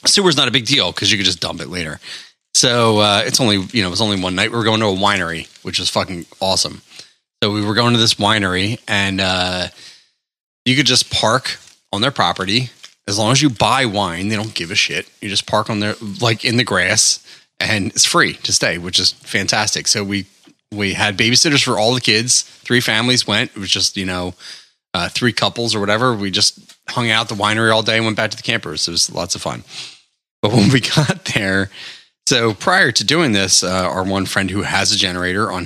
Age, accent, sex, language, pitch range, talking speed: 30-49, American, male, English, 100-130 Hz, 235 wpm